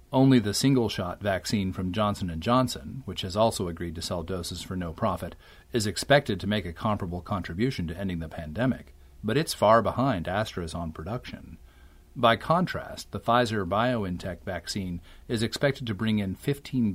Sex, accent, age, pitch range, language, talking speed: male, American, 40-59, 85-115 Hz, English, 165 wpm